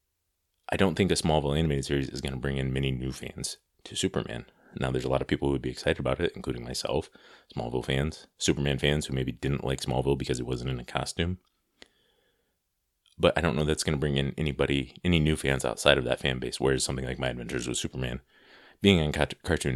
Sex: male